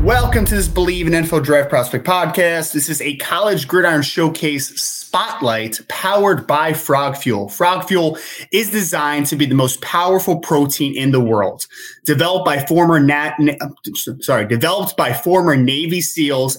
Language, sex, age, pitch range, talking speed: English, male, 20-39, 140-180 Hz, 155 wpm